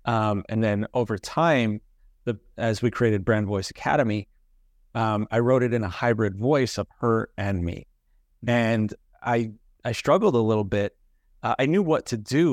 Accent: American